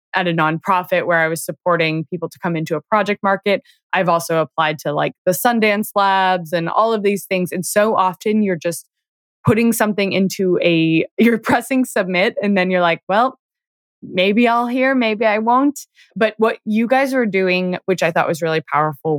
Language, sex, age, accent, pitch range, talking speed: English, female, 20-39, American, 170-215 Hz, 195 wpm